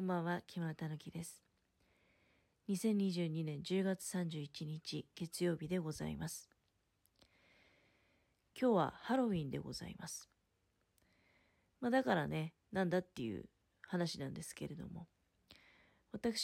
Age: 40-59